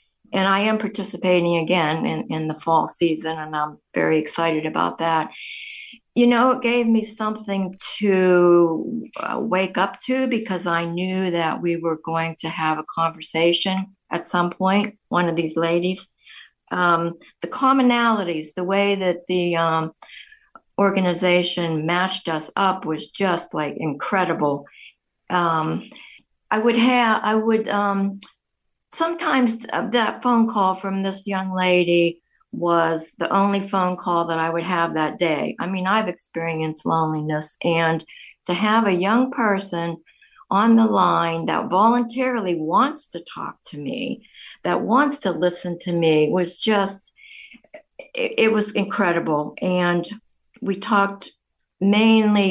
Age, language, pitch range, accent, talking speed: 50-69, English, 170-215 Hz, American, 140 wpm